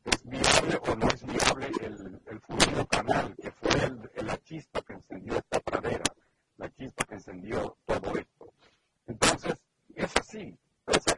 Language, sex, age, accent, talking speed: Spanish, male, 50-69, Mexican, 155 wpm